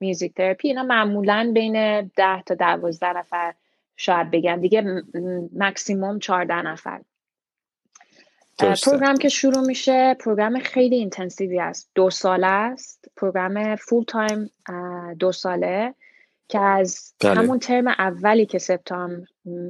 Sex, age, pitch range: female, 20-39, 180-220 Hz